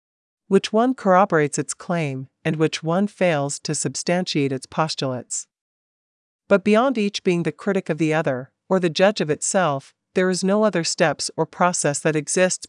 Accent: American